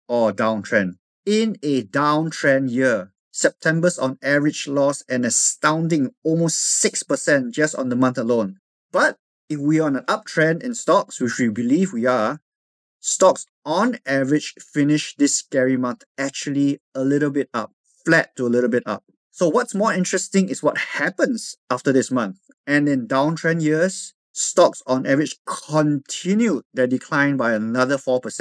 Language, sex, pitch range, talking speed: English, male, 130-180 Hz, 150 wpm